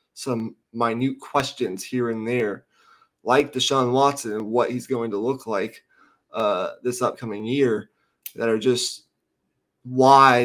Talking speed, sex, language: 140 wpm, male, English